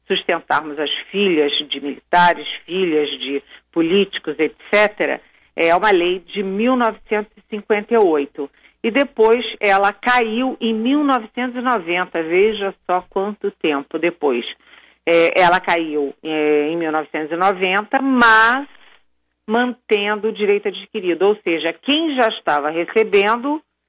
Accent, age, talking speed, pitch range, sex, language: Brazilian, 50-69, 100 wpm, 160-215 Hz, female, Portuguese